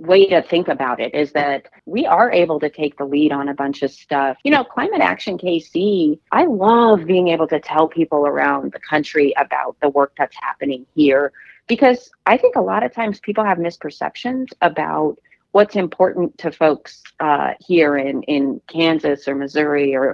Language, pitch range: English, 150-195 Hz